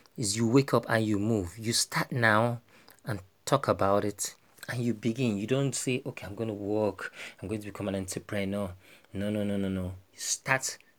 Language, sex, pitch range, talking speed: English, male, 100-125 Hz, 190 wpm